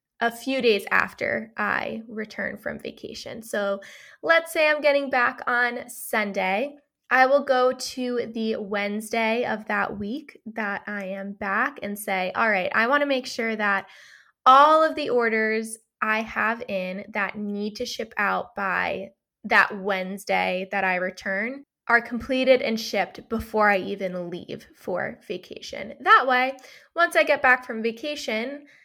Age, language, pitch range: 20-39, English, 205-260 Hz